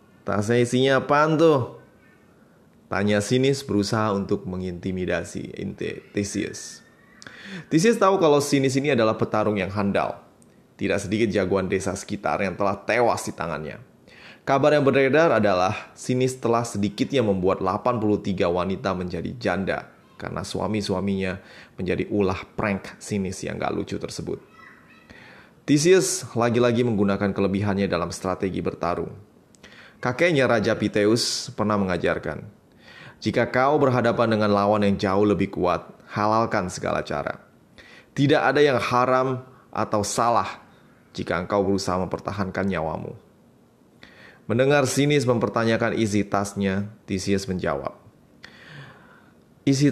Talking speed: 115 wpm